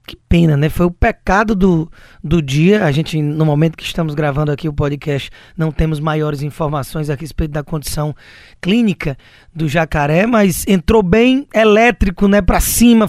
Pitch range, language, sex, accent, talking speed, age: 165-225 Hz, Portuguese, male, Brazilian, 170 wpm, 20-39